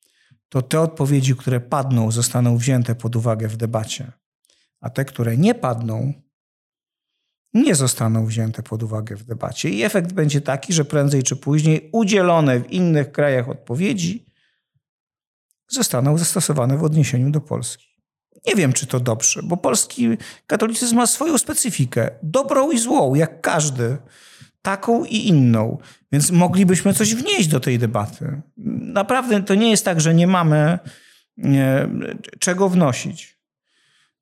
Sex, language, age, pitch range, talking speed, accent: male, Polish, 50-69, 130-195 Hz, 135 wpm, native